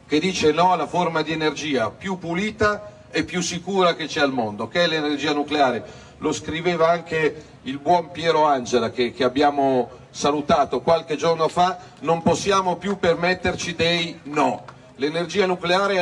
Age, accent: 40-59, native